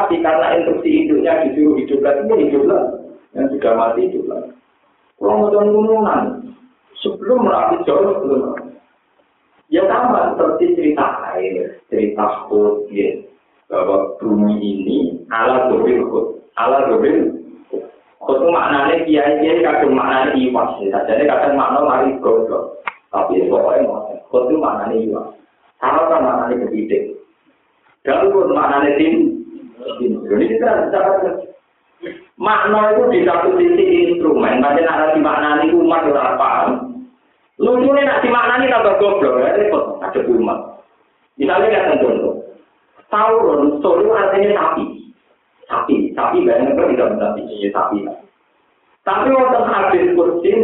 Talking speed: 125 wpm